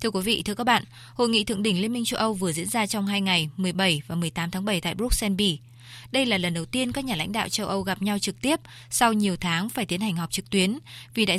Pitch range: 175-220 Hz